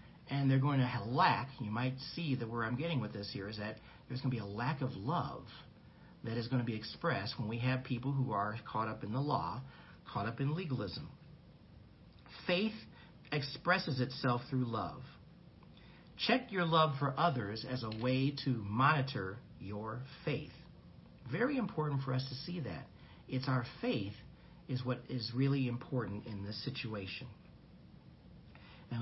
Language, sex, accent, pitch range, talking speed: English, male, American, 120-155 Hz, 170 wpm